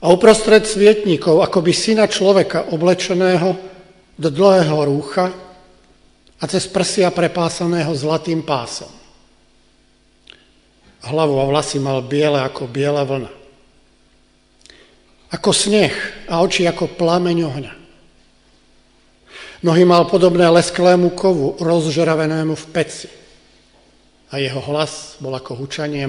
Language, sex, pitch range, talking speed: Slovak, male, 140-180 Hz, 105 wpm